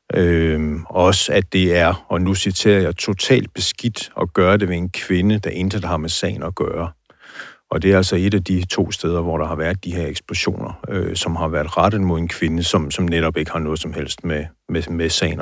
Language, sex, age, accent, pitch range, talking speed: Danish, male, 60-79, native, 85-100 Hz, 220 wpm